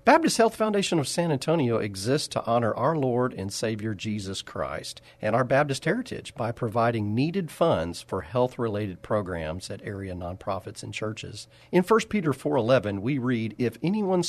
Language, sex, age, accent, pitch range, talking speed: English, male, 40-59, American, 105-140 Hz, 165 wpm